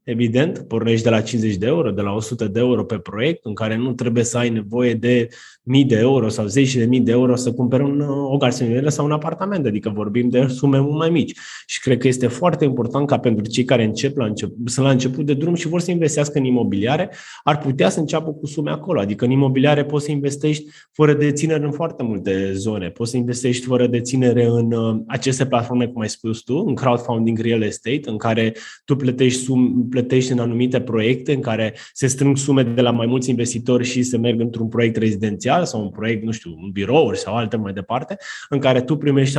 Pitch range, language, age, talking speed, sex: 115-140 Hz, Romanian, 20-39, 220 wpm, male